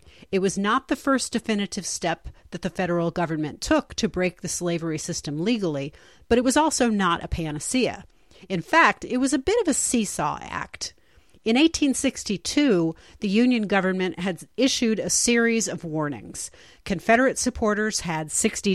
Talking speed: 160 wpm